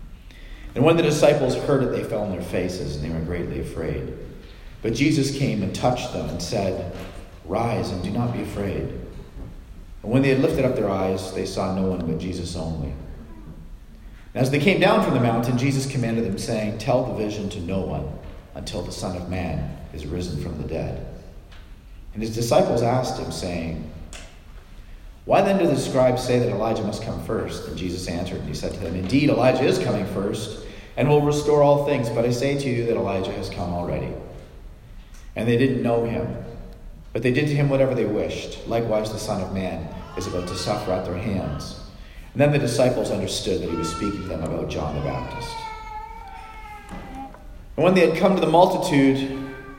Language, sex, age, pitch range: English, male, 40-59, 90-135 Hz